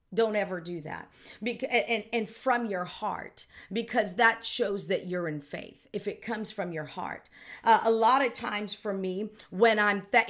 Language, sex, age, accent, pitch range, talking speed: English, female, 50-69, American, 195-235 Hz, 190 wpm